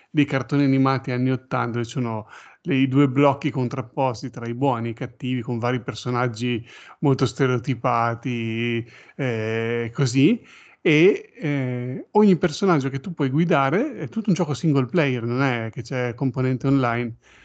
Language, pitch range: Italian, 120-140 Hz